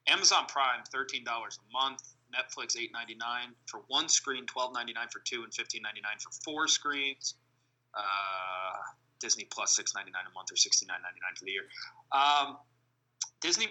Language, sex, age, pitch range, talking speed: English, male, 30-49, 125-145 Hz, 135 wpm